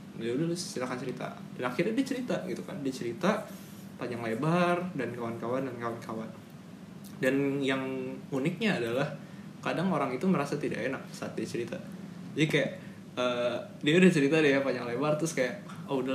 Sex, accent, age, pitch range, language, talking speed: male, native, 20-39, 130-185 Hz, Indonesian, 160 wpm